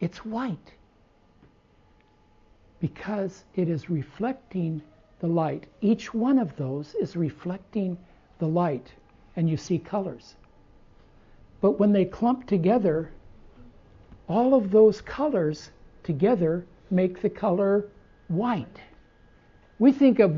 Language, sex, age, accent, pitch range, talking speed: English, male, 60-79, American, 145-205 Hz, 110 wpm